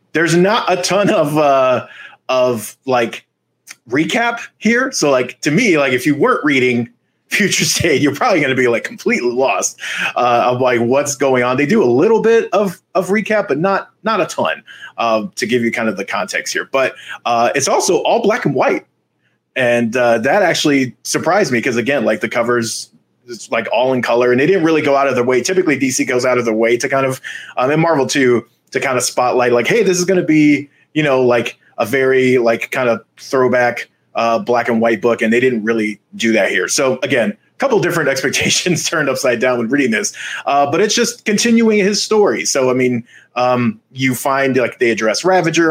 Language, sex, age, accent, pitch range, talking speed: English, male, 30-49, American, 120-165 Hz, 220 wpm